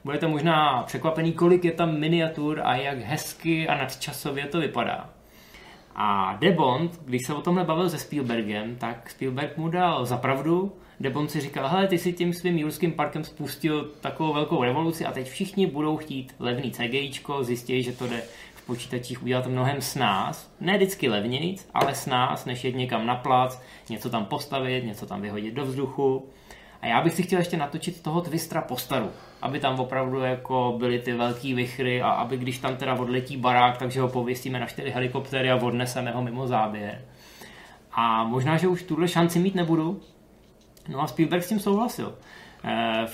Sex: male